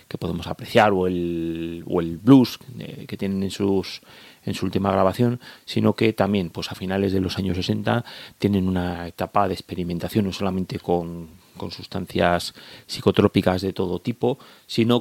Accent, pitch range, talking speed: Spanish, 90-105 Hz, 170 wpm